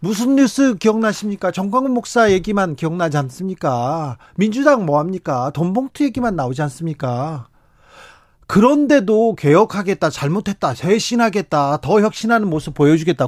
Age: 40-59